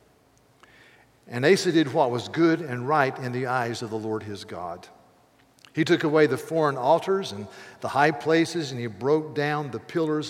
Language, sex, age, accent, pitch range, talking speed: English, male, 50-69, American, 120-150 Hz, 185 wpm